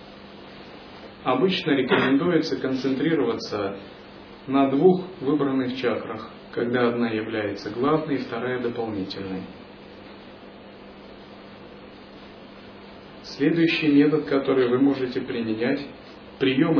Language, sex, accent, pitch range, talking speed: Russian, male, native, 120-145 Hz, 75 wpm